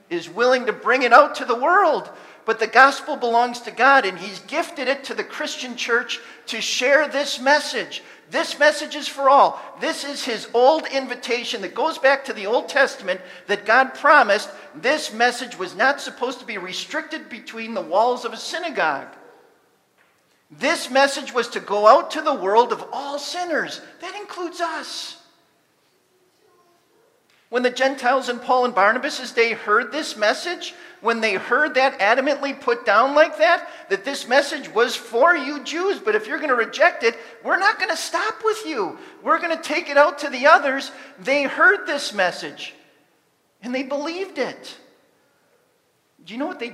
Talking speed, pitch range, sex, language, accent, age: 180 wpm, 235-330 Hz, male, English, American, 50-69